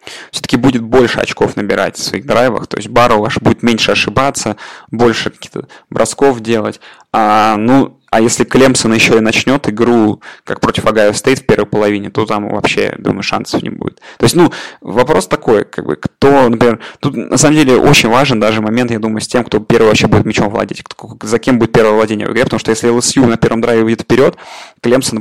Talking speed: 210 wpm